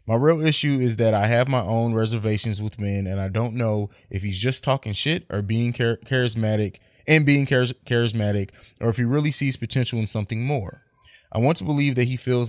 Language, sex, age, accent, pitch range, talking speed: English, male, 20-39, American, 110-130 Hz, 205 wpm